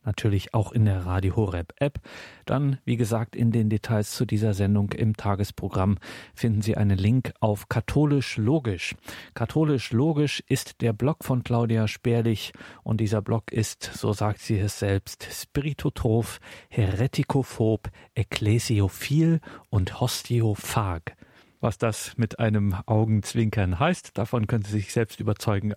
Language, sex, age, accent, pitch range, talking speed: German, male, 40-59, German, 105-120 Hz, 135 wpm